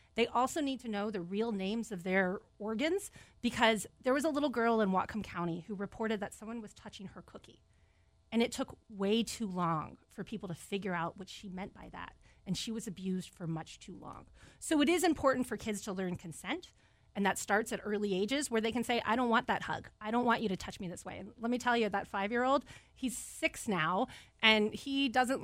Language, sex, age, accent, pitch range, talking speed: English, female, 30-49, American, 195-250 Hz, 230 wpm